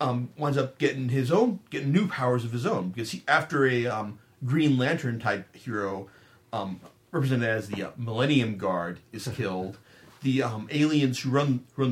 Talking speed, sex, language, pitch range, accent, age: 180 wpm, male, English, 120-145 Hz, American, 40-59